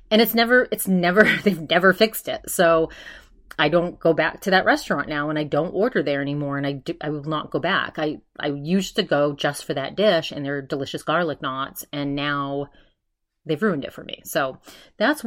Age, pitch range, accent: 30-49, 150-190 Hz, American